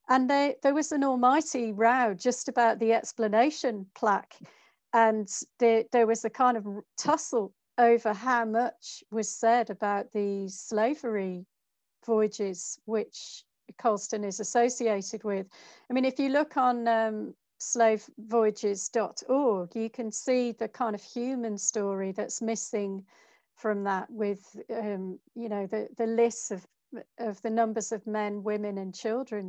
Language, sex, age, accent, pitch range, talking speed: English, female, 50-69, British, 210-245 Hz, 140 wpm